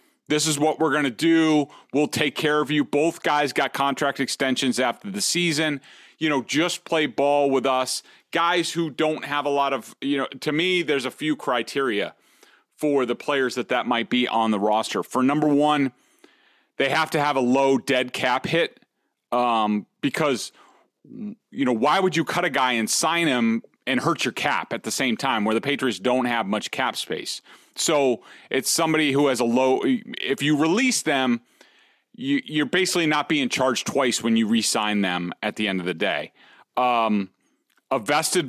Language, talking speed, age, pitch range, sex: English, 195 wpm, 30-49, 125-165 Hz, male